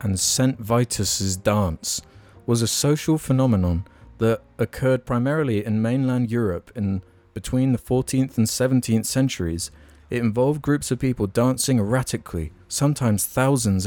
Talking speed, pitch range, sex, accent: 130 wpm, 95-125 Hz, male, British